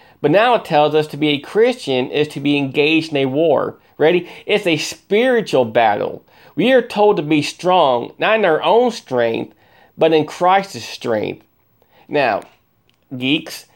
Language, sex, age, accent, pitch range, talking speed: English, male, 40-59, American, 145-195 Hz, 165 wpm